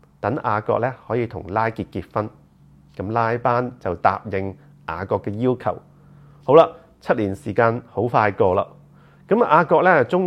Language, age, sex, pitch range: Chinese, 30-49, male, 105-150 Hz